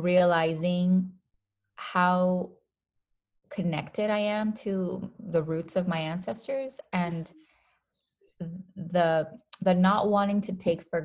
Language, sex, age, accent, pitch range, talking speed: English, female, 20-39, American, 155-190 Hz, 105 wpm